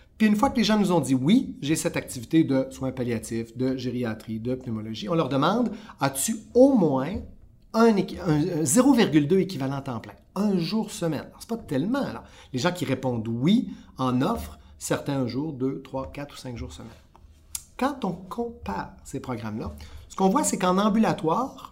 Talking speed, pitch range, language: 205 wpm, 125-180 Hz, French